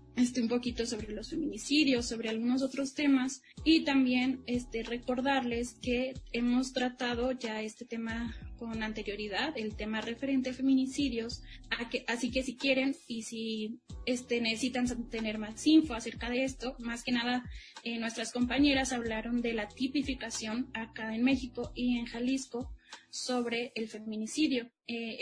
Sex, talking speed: female, 140 wpm